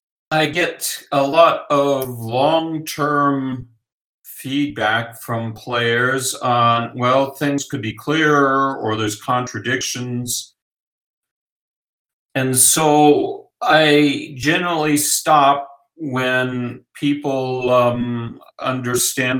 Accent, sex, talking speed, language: American, male, 85 wpm, Italian